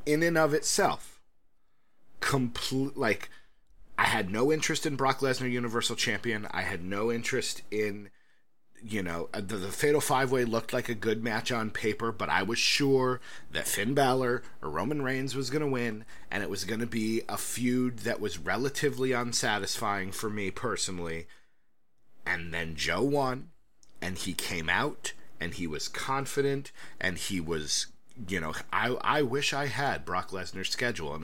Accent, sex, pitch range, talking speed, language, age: American, male, 105-140 Hz, 165 wpm, English, 30-49